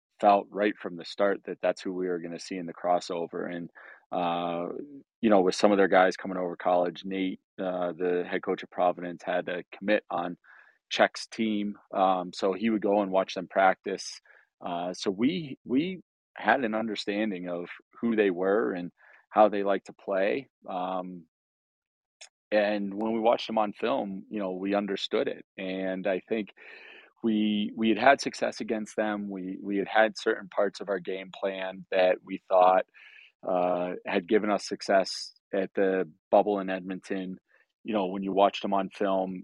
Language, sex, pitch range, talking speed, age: English, male, 90-105 Hz, 185 wpm, 30-49